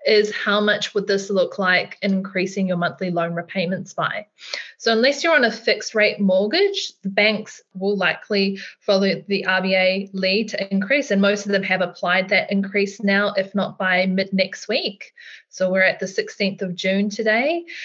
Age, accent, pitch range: 20-39, Australian, 185-210 Hz